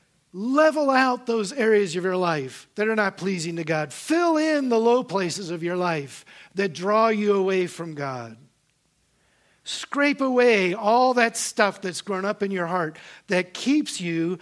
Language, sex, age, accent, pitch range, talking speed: English, male, 50-69, American, 145-215 Hz, 170 wpm